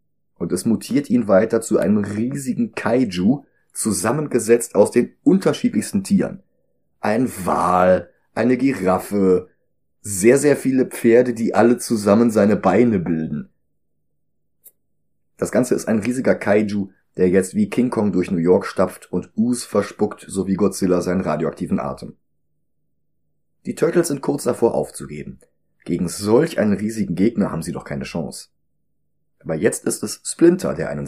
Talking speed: 145 wpm